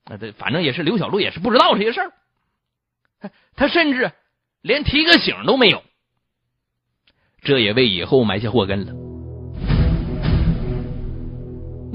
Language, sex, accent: Chinese, male, native